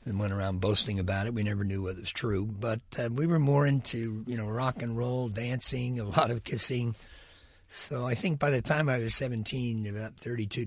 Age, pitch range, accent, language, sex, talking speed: 60-79, 105-135 Hz, American, English, male, 220 wpm